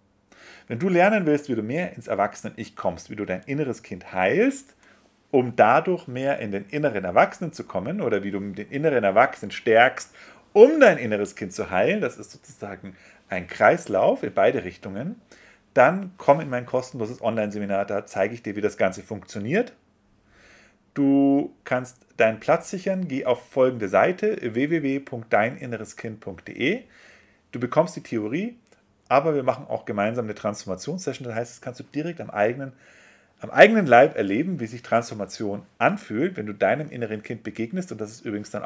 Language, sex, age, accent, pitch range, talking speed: German, male, 40-59, German, 105-145 Hz, 170 wpm